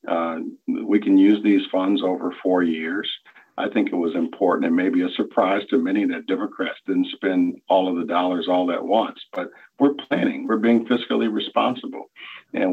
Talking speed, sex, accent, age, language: 185 wpm, male, American, 50-69, English